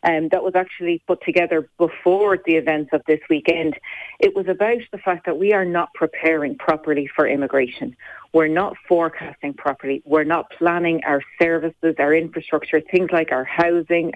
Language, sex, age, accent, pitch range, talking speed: English, female, 40-59, Irish, 150-175 Hz, 170 wpm